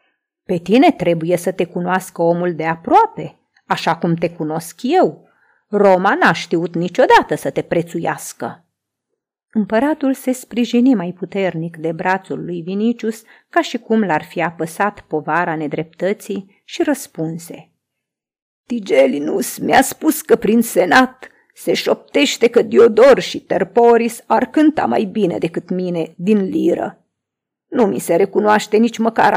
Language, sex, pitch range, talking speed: Romanian, female, 180-270 Hz, 135 wpm